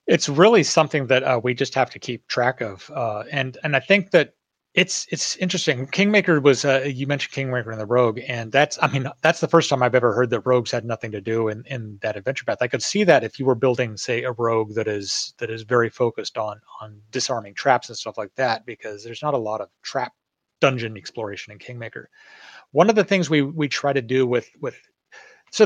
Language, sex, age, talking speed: English, male, 30-49, 235 wpm